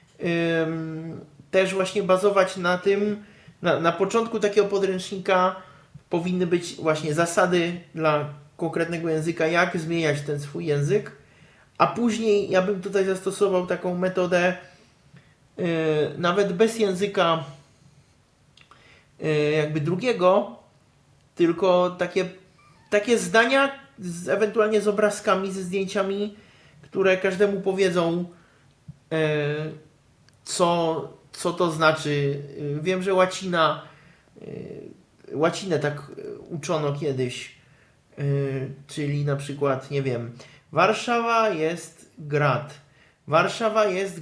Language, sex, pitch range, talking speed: Polish, male, 150-195 Hz, 90 wpm